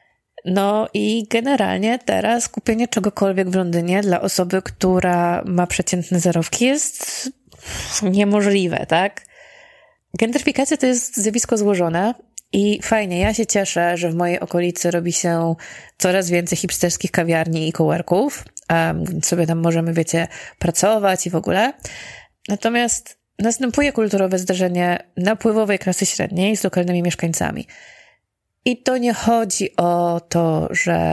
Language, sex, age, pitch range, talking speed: Polish, female, 20-39, 175-225 Hz, 125 wpm